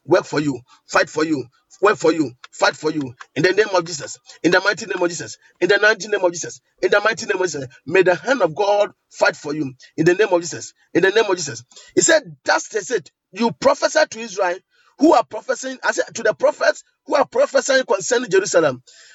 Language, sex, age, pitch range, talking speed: English, male, 40-59, 160-265 Hz, 245 wpm